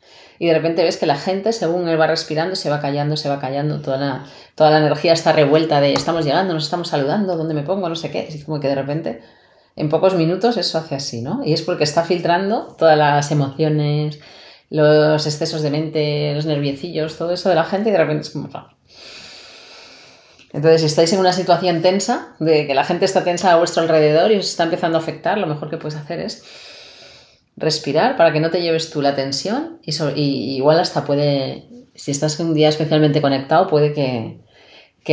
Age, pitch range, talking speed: 30-49, 145-170 Hz, 210 wpm